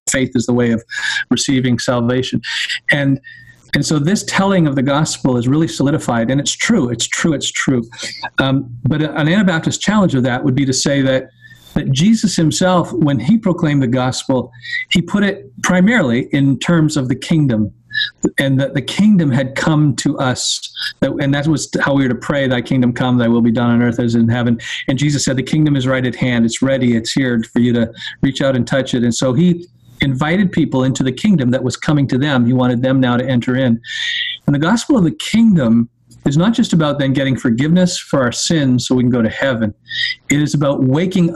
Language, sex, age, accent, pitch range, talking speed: English, male, 40-59, American, 125-160 Hz, 215 wpm